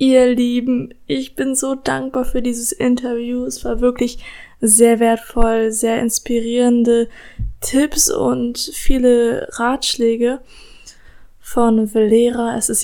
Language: German